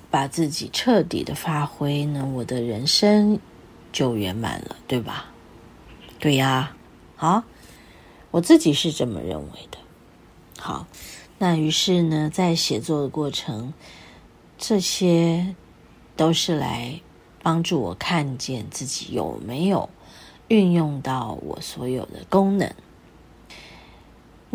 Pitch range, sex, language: 135-180 Hz, female, Chinese